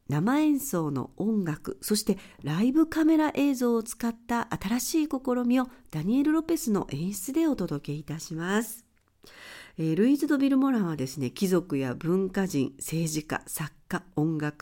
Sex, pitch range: female, 165-260 Hz